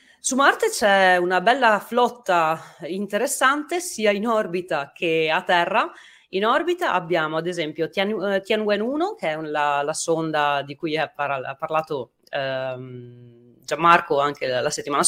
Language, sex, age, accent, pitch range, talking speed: Italian, female, 30-49, native, 160-220 Hz, 130 wpm